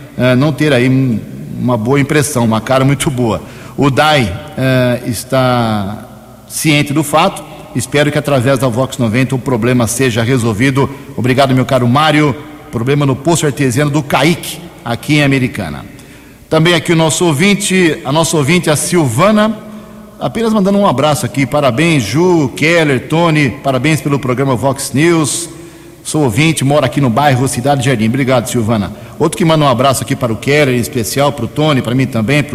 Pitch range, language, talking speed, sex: 125-160 Hz, Portuguese, 170 wpm, male